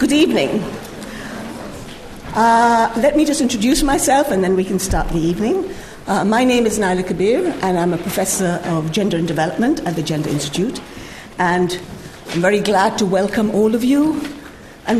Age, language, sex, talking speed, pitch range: 60-79, English, female, 170 wpm, 185-255 Hz